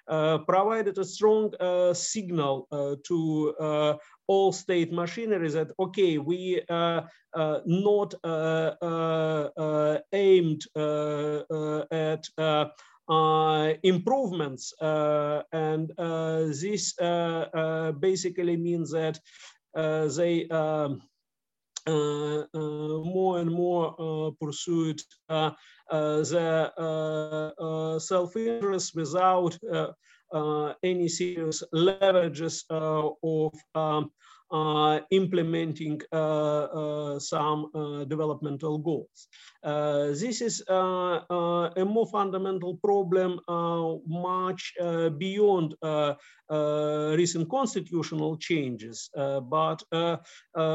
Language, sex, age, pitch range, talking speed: English, male, 50-69, 155-180 Hz, 90 wpm